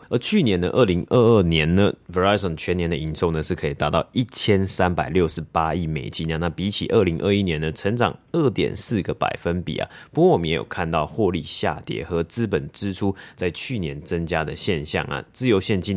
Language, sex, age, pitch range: Chinese, male, 30-49, 80-100 Hz